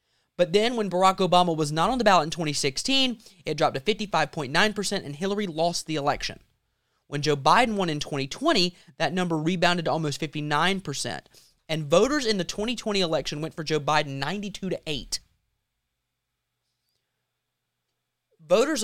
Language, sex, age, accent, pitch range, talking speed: English, male, 30-49, American, 145-190 Hz, 150 wpm